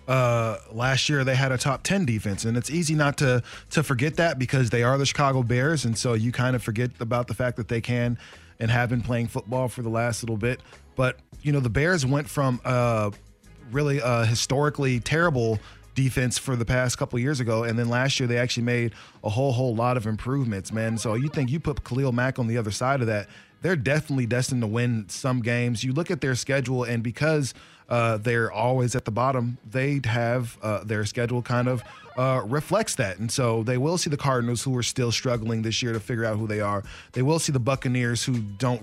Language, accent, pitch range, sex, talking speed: English, American, 115-135 Hz, male, 230 wpm